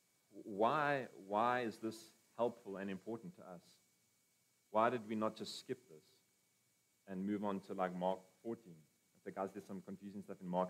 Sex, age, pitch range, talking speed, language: male, 30-49, 95-115 Hz, 180 wpm, English